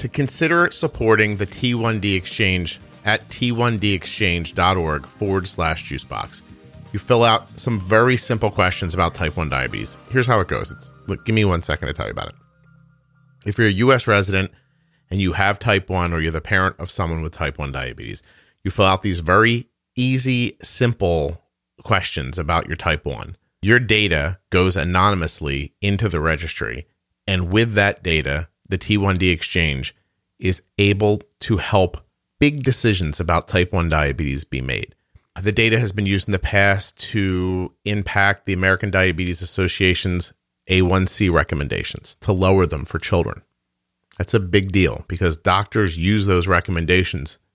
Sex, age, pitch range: male, 40-59, 90-120 Hz